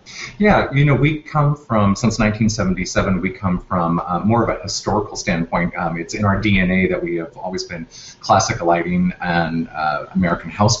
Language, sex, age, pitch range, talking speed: English, male, 30-49, 95-125 Hz, 185 wpm